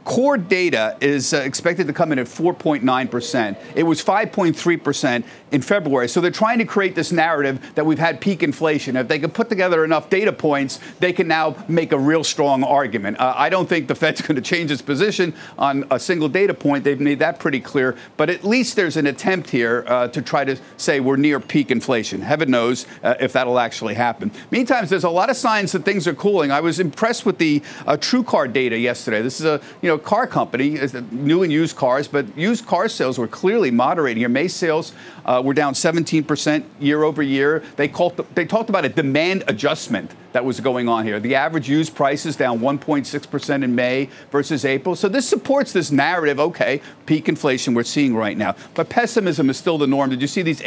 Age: 50-69